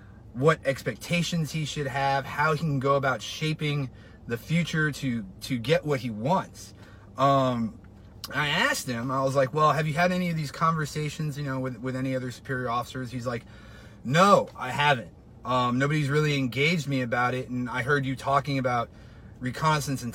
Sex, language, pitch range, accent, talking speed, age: male, English, 115-145 Hz, American, 185 wpm, 30-49